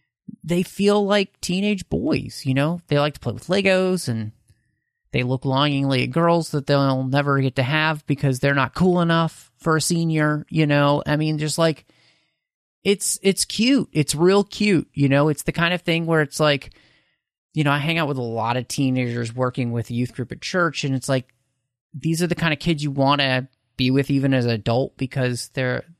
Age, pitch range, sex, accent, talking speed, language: 30-49, 125-160 Hz, male, American, 210 wpm, English